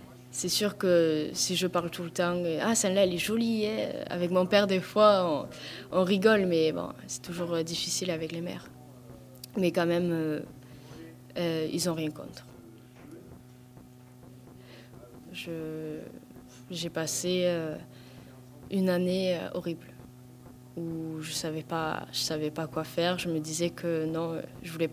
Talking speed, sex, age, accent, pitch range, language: 150 wpm, female, 20-39, French, 150-180 Hz, English